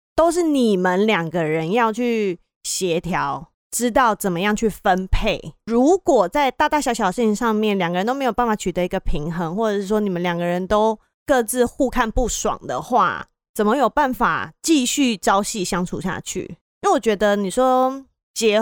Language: Chinese